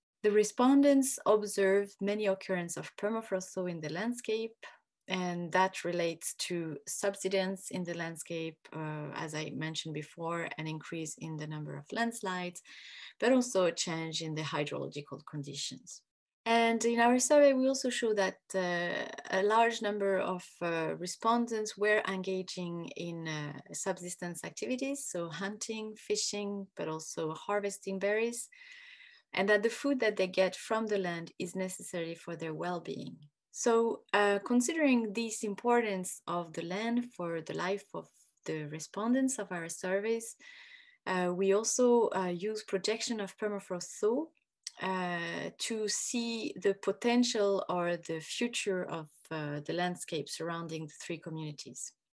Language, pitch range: Swedish, 170-225 Hz